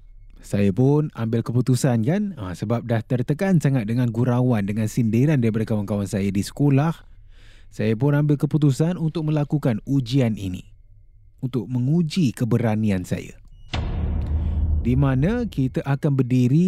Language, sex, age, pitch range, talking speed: Malay, male, 30-49, 100-140 Hz, 130 wpm